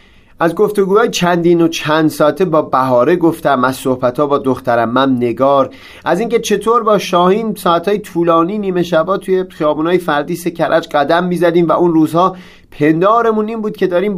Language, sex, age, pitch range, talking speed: Persian, male, 30-49, 130-175 Hz, 165 wpm